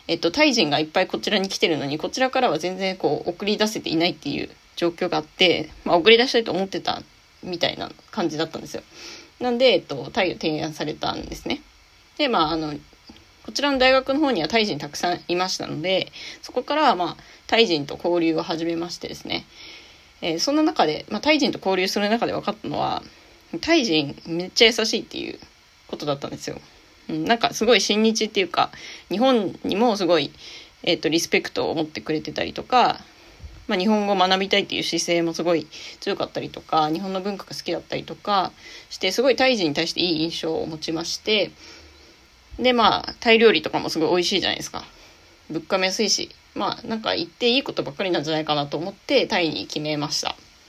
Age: 20-39